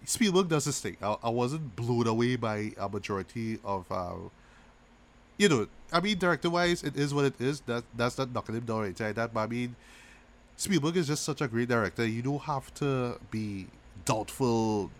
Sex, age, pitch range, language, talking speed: male, 30-49, 105-135 Hz, English, 185 wpm